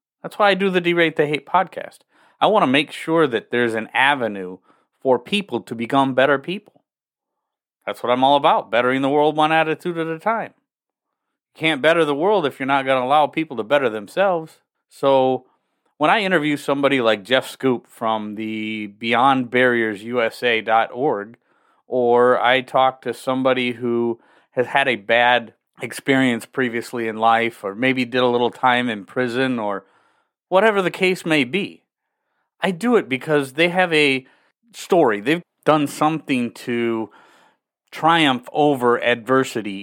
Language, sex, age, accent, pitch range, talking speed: English, male, 30-49, American, 120-150 Hz, 160 wpm